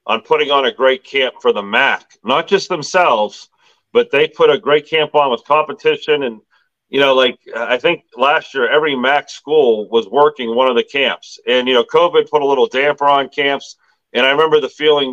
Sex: male